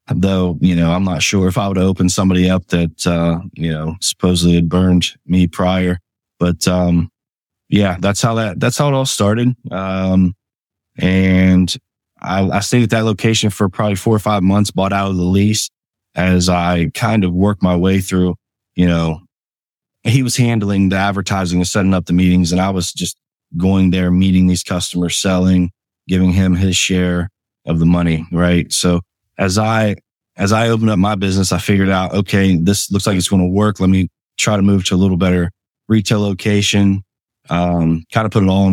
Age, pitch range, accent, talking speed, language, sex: 20-39, 90-100 Hz, American, 195 wpm, English, male